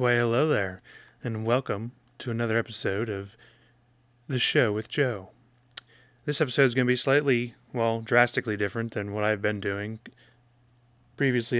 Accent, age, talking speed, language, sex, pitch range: American, 30-49, 150 wpm, English, male, 105-120 Hz